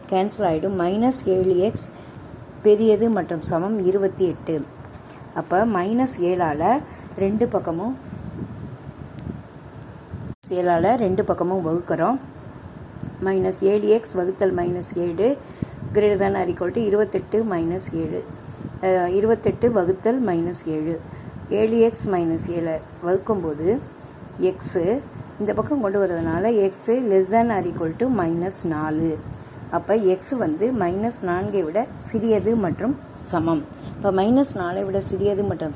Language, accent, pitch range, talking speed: Tamil, native, 165-200 Hz, 95 wpm